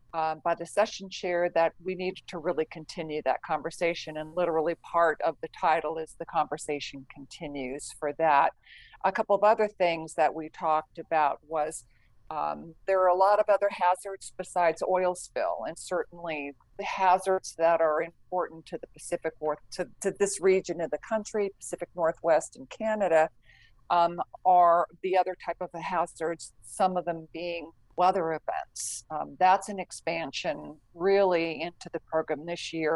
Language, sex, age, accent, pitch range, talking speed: English, female, 50-69, American, 155-180 Hz, 165 wpm